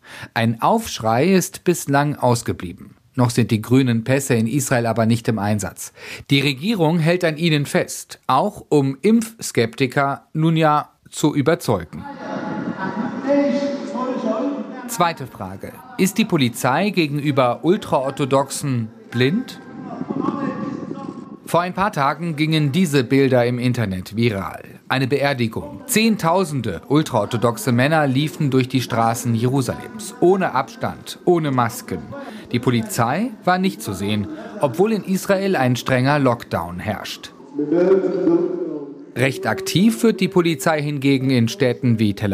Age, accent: 40-59, German